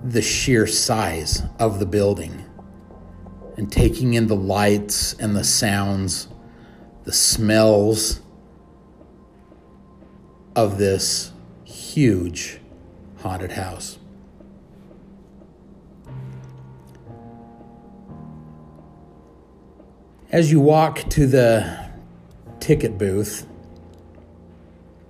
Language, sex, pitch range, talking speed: English, male, 85-115 Hz, 65 wpm